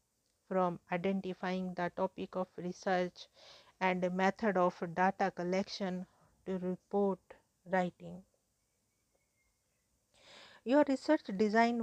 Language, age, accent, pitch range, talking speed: English, 50-69, Indian, 185-210 Hz, 85 wpm